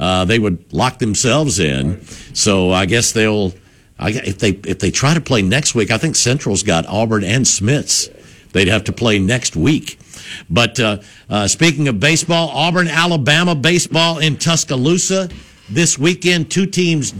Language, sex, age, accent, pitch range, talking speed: English, male, 60-79, American, 105-150 Hz, 170 wpm